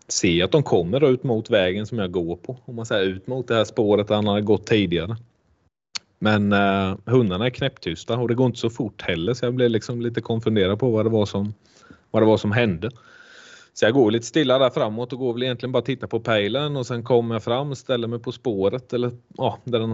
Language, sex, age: Swedish, male, 30-49